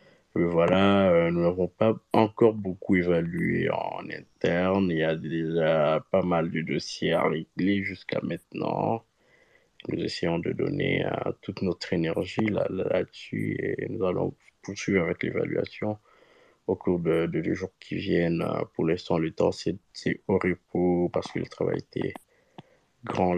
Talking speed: 155 wpm